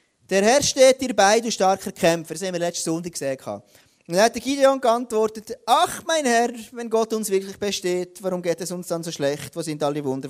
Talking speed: 225 wpm